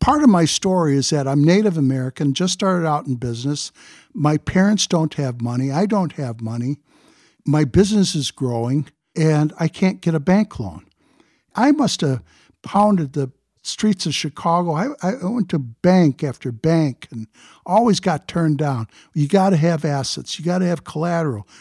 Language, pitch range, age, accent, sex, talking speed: English, 140-185 Hz, 60-79, American, male, 180 wpm